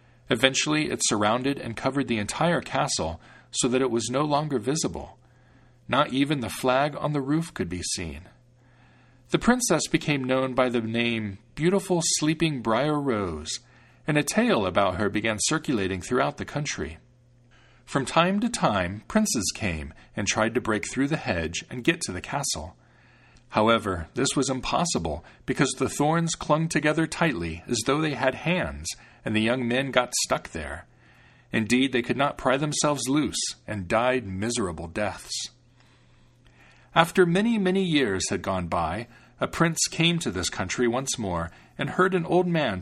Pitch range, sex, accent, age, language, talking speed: 110-150 Hz, male, American, 40-59, English, 165 wpm